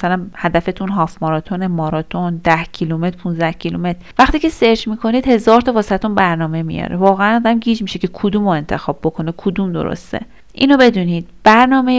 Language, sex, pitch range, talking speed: Persian, female, 180-245 Hz, 155 wpm